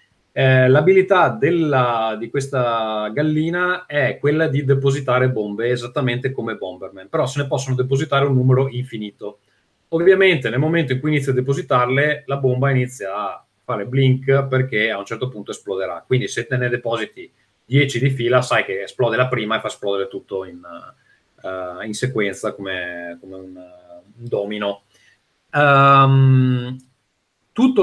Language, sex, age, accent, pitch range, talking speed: Italian, male, 30-49, native, 105-130 Hz, 150 wpm